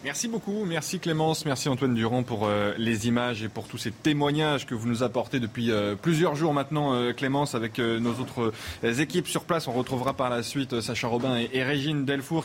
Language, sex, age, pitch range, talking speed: French, male, 20-39, 115-150 Hz, 195 wpm